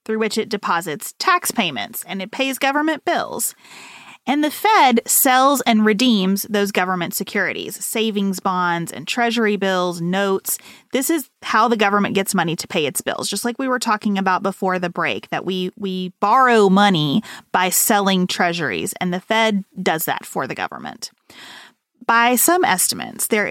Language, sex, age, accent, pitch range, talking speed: English, female, 30-49, American, 190-240 Hz, 170 wpm